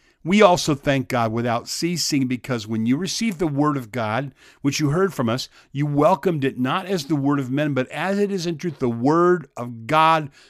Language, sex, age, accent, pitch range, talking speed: English, male, 50-69, American, 130-160 Hz, 215 wpm